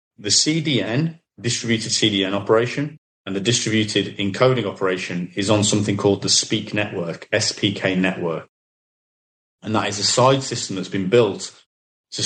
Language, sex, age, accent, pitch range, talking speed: Filipino, male, 30-49, British, 100-125 Hz, 140 wpm